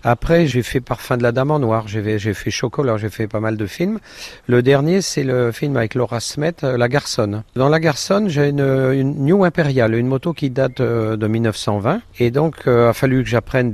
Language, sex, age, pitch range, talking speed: French, male, 50-69, 110-140 Hz, 220 wpm